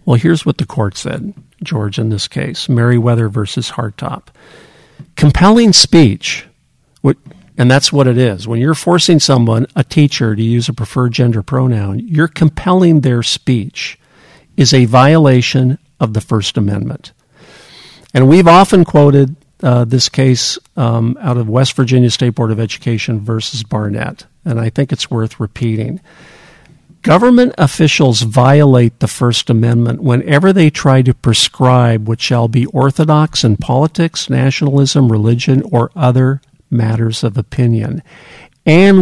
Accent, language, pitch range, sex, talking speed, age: American, English, 115-150 Hz, male, 140 wpm, 50-69